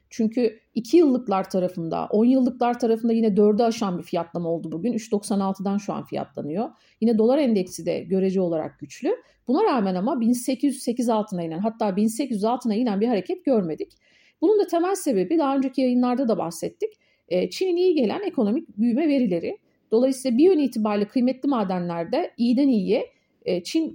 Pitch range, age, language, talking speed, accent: 205-295 Hz, 40-59, Turkish, 155 wpm, native